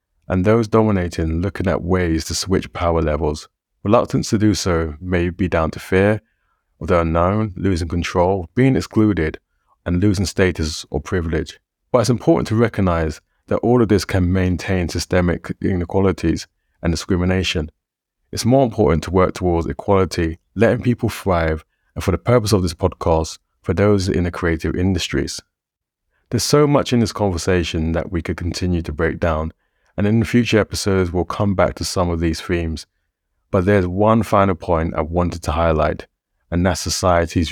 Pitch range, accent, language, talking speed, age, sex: 80-100 Hz, British, English, 170 wpm, 30-49, male